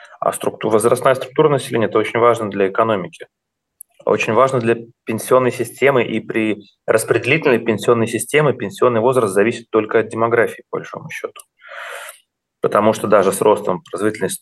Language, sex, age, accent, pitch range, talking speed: Russian, male, 30-49, native, 95-115 Hz, 145 wpm